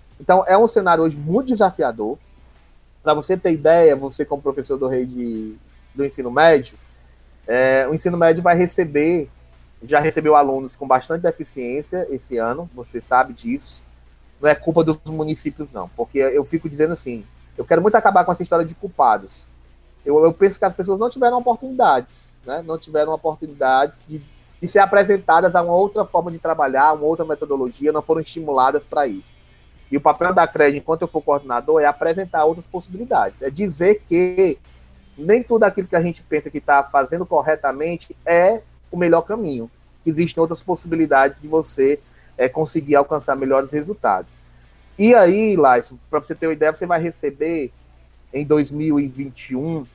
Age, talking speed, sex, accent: 30-49, 170 wpm, male, Brazilian